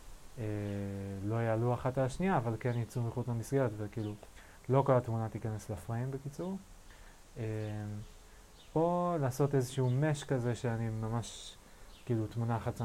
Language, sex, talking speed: Hebrew, male, 135 wpm